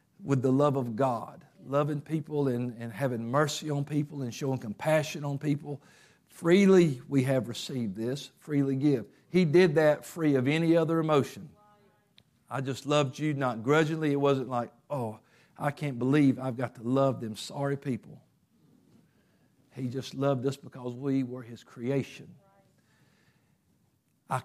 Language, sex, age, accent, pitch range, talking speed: English, male, 50-69, American, 125-145 Hz, 155 wpm